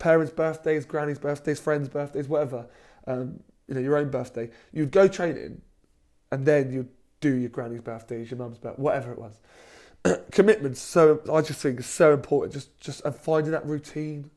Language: English